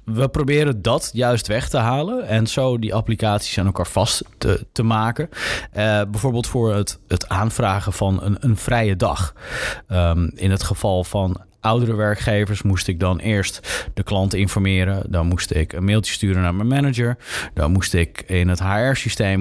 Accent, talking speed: Dutch, 175 wpm